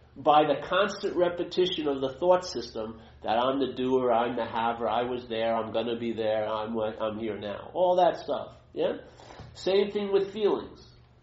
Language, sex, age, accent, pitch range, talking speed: English, male, 50-69, American, 130-180 Hz, 185 wpm